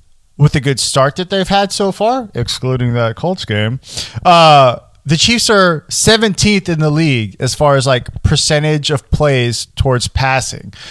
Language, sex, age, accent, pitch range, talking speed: English, male, 20-39, American, 125-180 Hz, 165 wpm